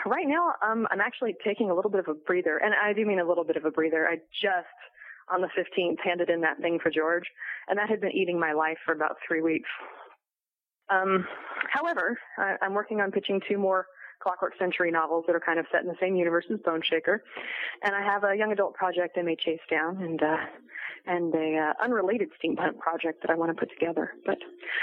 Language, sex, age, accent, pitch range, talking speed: English, female, 30-49, American, 170-225 Hz, 225 wpm